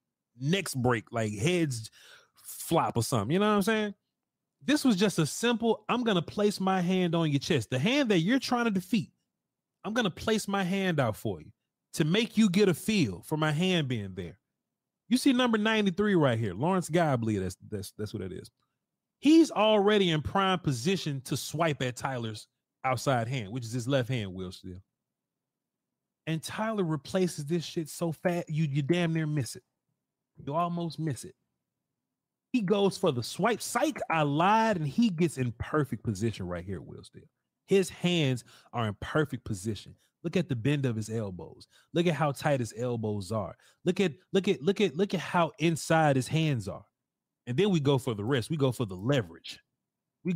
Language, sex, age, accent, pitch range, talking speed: English, male, 30-49, American, 120-185 Hz, 200 wpm